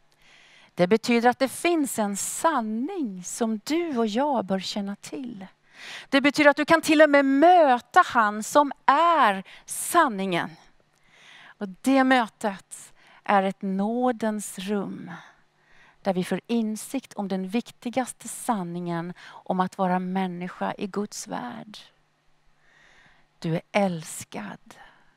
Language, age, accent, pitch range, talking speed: Swedish, 40-59, native, 190-270 Hz, 125 wpm